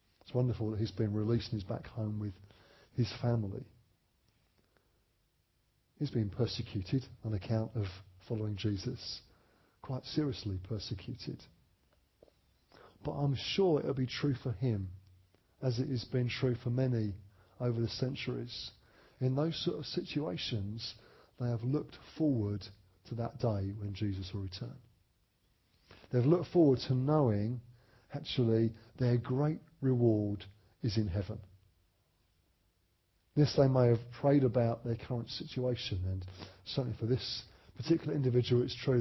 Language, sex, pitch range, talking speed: English, male, 100-125 Hz, 135 wpm